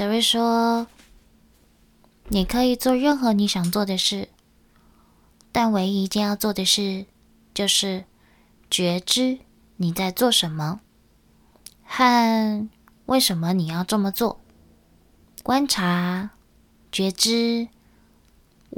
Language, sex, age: Chinese, female, 20-39